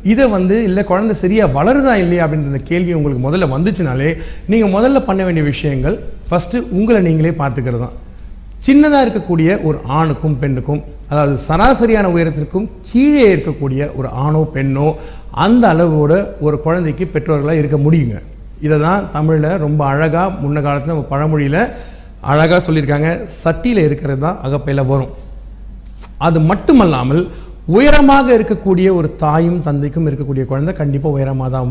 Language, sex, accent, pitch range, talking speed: Tamil, male, native, 145-195 Hz, 130 wpm